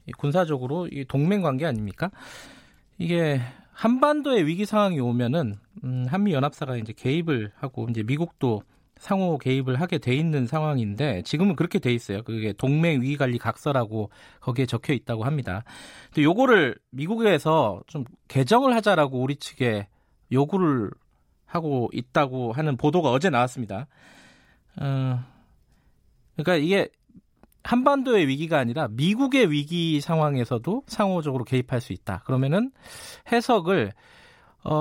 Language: Korean